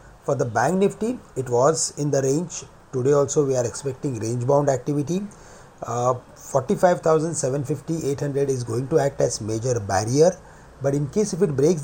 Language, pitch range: English, 125-165 Hz